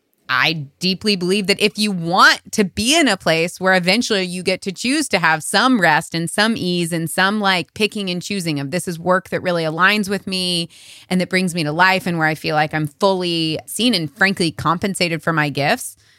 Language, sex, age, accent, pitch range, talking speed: English, female, 20-39, American, 160-200 Hz, 220 wpm